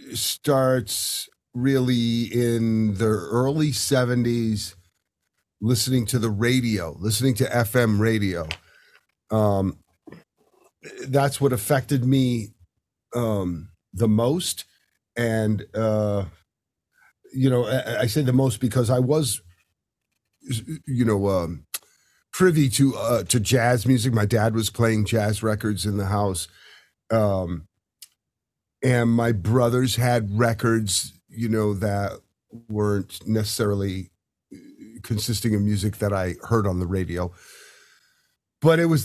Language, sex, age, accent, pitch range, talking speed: English, male, 50-69, American, 105-135 Hz, 115 wpm